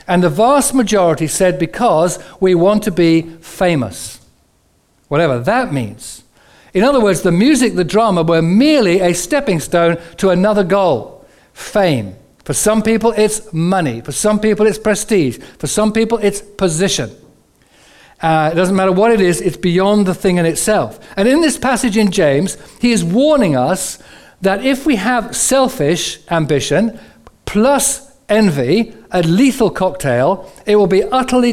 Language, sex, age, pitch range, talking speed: English, male, 60-79, 160-215 Hz, 160 wpm